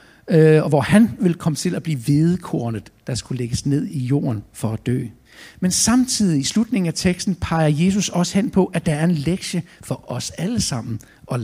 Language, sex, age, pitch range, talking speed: Danish, male, 60-79, 140-195 Hz, 205 wpm